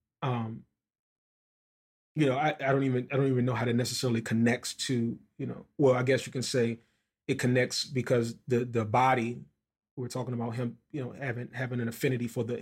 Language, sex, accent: English, male, American